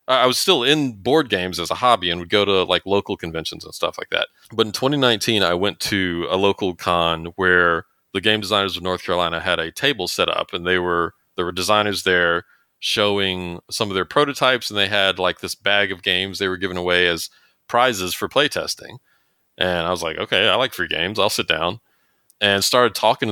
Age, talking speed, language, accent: 30-49, 215 wpm, English, American